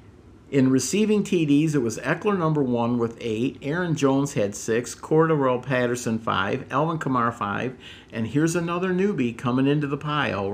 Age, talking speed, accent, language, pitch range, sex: 50-69, 160 wpm, American, English, 115-145 Hz, male